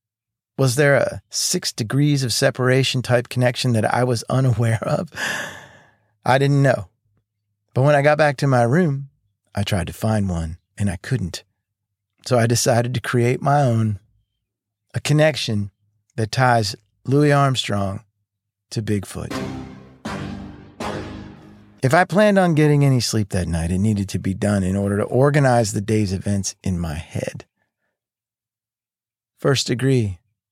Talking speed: 145 wpm